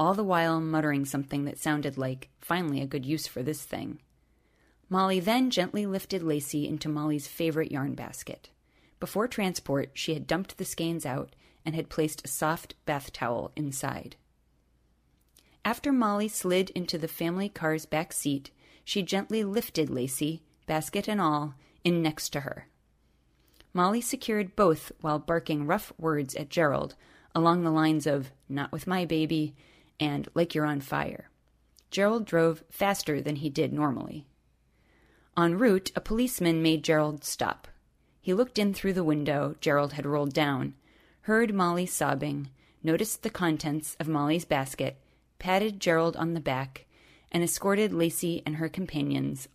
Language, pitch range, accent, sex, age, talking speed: English, 145-180 Hz, American, female, 30-49, 155 wpm